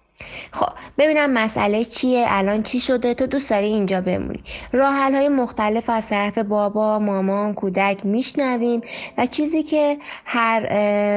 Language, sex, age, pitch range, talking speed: Persian, female, 20-39, 200-255 Hz, 135 wpm